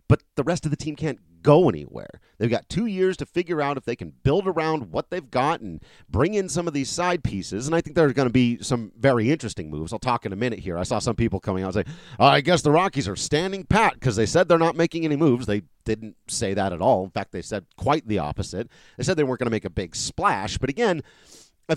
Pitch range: 110-160 Hz